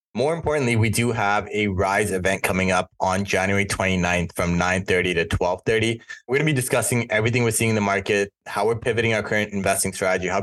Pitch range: 95-110 Hz